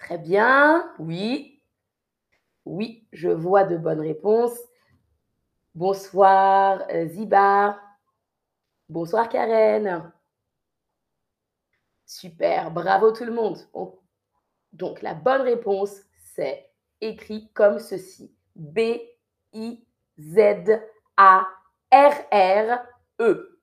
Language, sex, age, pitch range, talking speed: French, female, 30-49, 195-275 Hz, 70 wpm